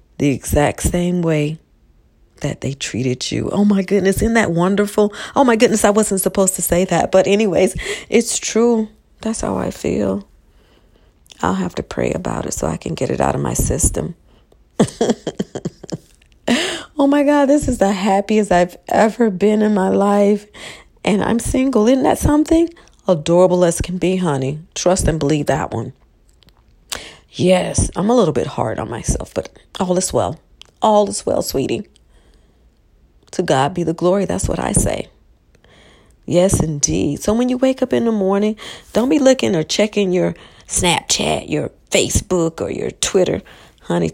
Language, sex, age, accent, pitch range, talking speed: English, female, 40-59, American, 160-215 Hz, 165 wpm